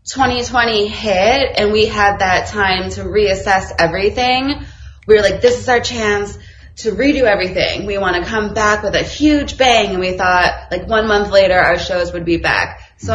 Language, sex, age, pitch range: English, female, 20-39, 175-220 Hz